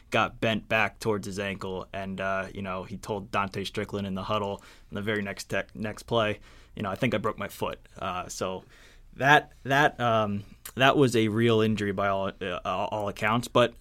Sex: male